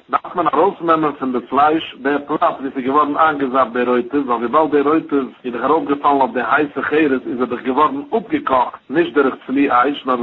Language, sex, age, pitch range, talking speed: English, male, 60-79, 125-155 Hz, 130 wpm